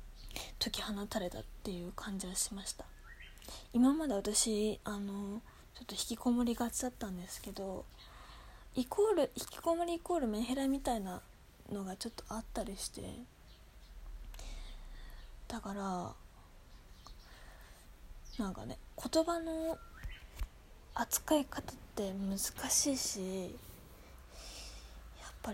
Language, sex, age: Japanese, female, 20-39